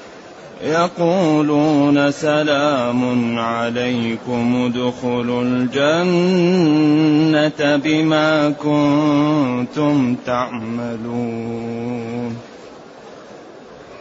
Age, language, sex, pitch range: 30-49, Arabic, male, 145-160 Hz